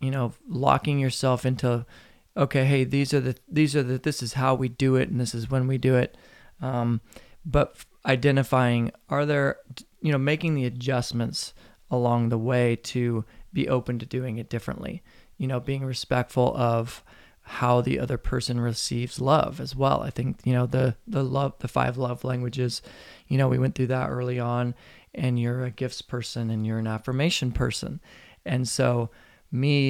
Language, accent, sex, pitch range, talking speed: English, American, male, 120-135 Hz, 185 wpm